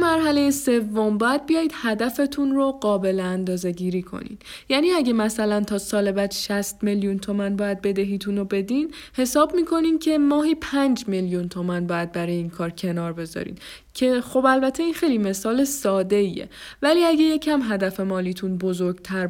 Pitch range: 195-260 Hz